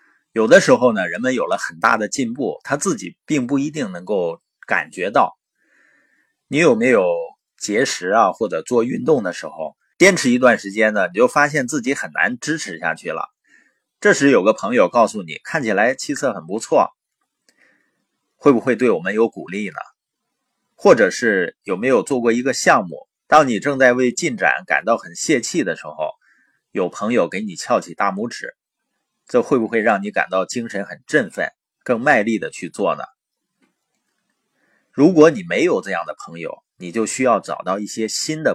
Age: 30-49